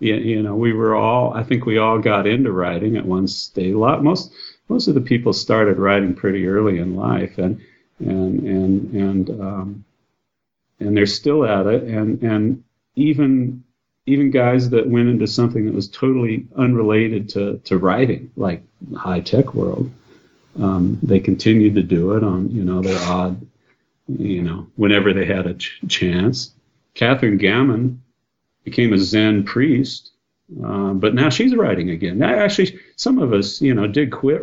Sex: male